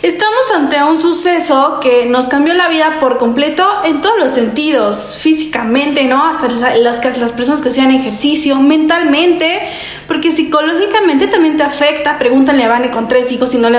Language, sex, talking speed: Spanish, female, 175 wpm